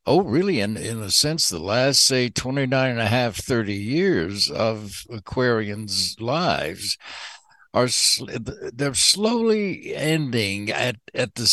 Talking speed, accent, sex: 140 wpm, American, male